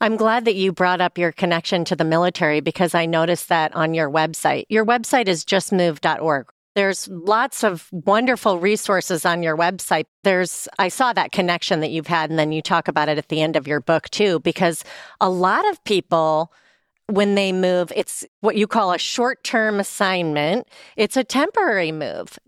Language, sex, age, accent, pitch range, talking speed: English, female, 40-59, American, 175-225 Hz, 185 wpm